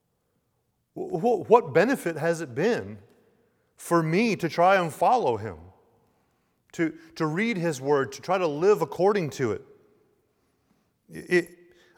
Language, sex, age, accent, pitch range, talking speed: English, male, 30-49, American, 145-190 Hz, 125 wpm